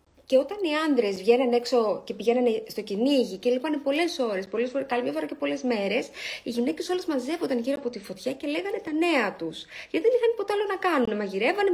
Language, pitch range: Greek, 215-305 Hz